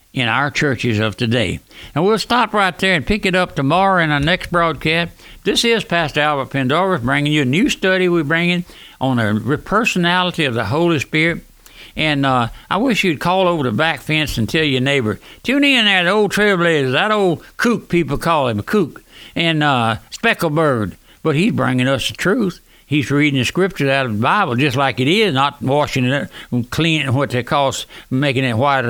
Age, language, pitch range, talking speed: 60-79, English, 130-175 Hz, 210 wpm